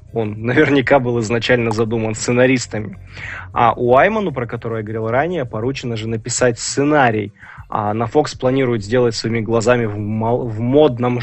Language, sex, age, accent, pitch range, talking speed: Russian, male, 20-39, native, 110-130 Hz, 145 wpm